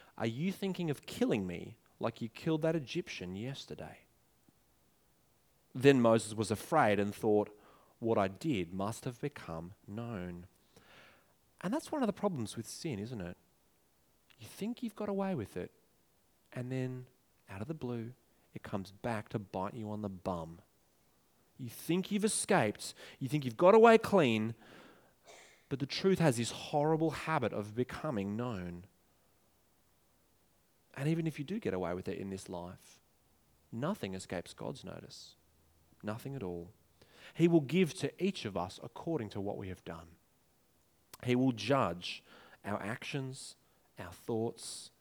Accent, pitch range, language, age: Australian, 95-150 Hz, English, 30-49